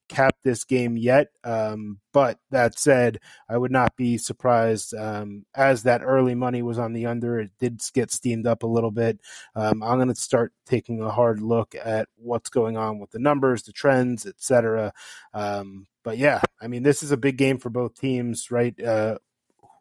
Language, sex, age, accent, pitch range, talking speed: English, male, 20-39, American, 110-130 Hz, 190 wpm